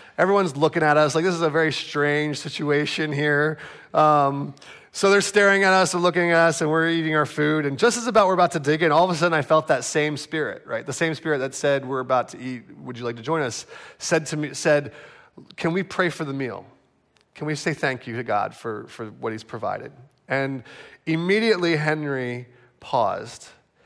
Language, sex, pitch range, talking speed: English, male, 135-170 Hz, 220 wpm